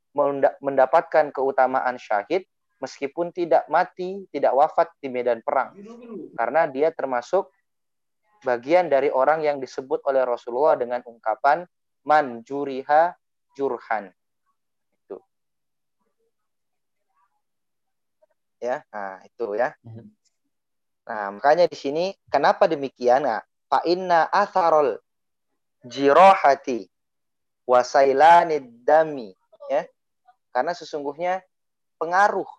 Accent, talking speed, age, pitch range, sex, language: native, 85 wpm, 30-49, 130-180 Hz, male, Indonesian